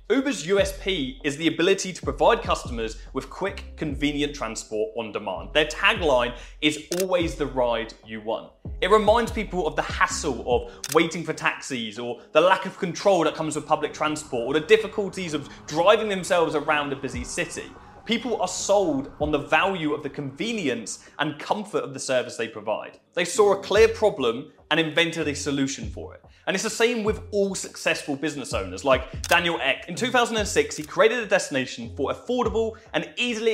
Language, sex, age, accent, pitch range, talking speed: English, male, 20-39, British, 135-190 Hz, 180 wpm